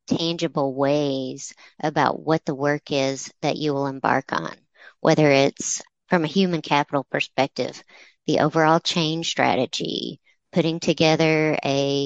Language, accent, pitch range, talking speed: English, American, 145-170 Hz, 130 wpm